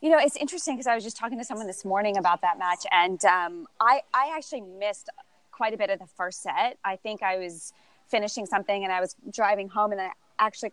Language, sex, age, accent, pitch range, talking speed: English, female, 20-39, American, 190-225 Hz, 240 wpm